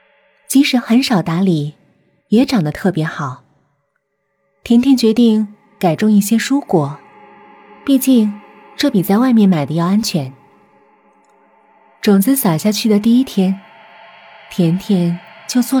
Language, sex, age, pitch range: Chinese, female, 20-39, 190-250 Hz